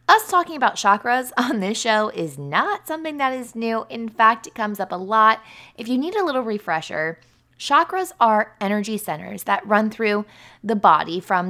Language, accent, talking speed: English, American, 190 wpm